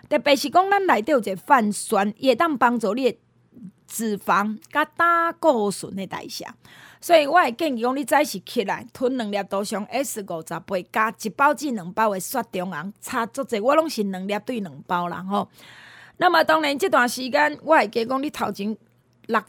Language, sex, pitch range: Chinese, female, 205-290 Hz